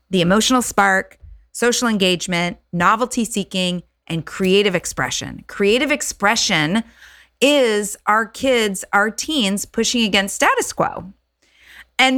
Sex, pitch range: female, 170-240 Hz